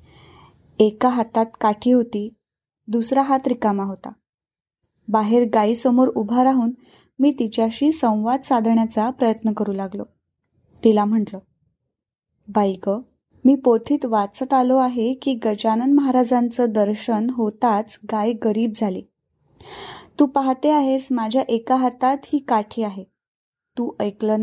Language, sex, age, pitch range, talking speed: Marathi, female, 20-39, 215-260 Hz, 115 wpm